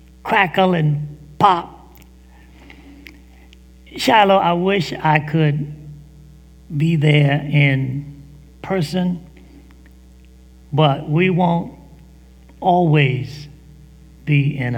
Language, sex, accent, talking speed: English, male, American, 75 wpm